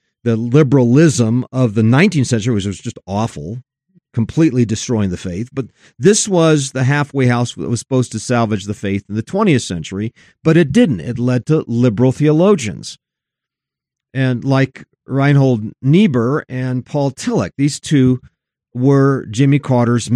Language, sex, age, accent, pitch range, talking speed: English, male, 40-59, American, 115-145 Hz, 150 wpm